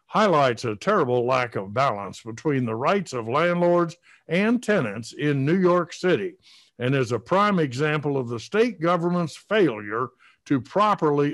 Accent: American